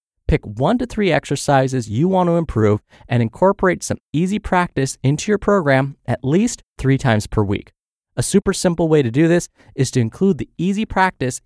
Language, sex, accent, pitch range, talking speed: English, male, American, 115-175 Hz, 190 wpm